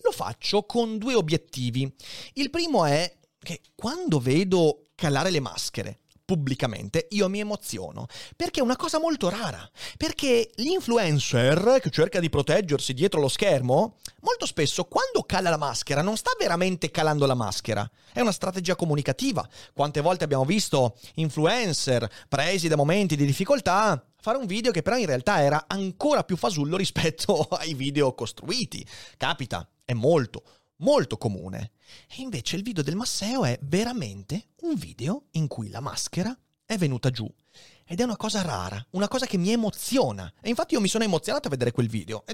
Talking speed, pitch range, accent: 165 wpm, 130-220 Hz, native